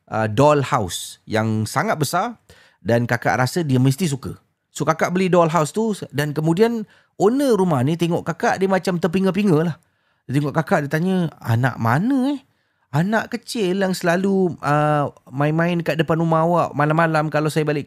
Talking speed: 165 wpm